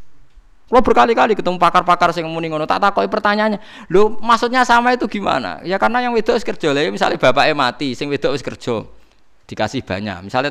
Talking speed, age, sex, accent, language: 190 wpm, 20-39, male, native, Indonesian